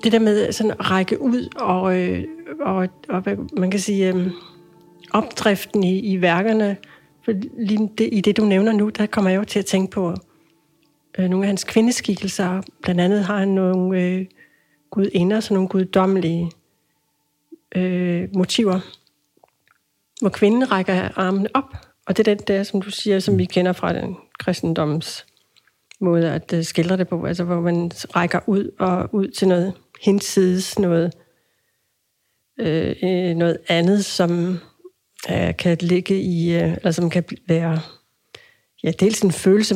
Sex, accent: female, native